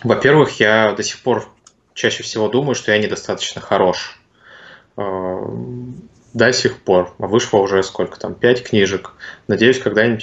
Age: 20-39